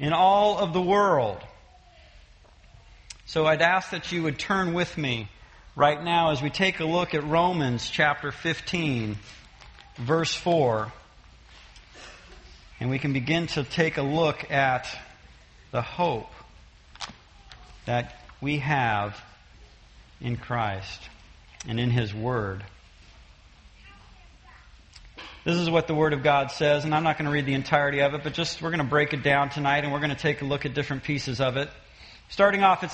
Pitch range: 125-185 Hz